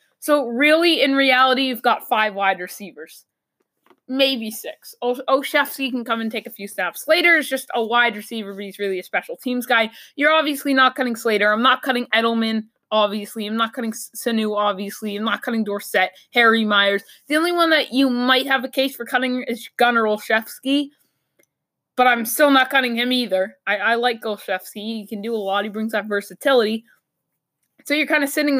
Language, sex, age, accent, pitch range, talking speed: English, female, 20-39, American, 215-270 Hz, 195 wpm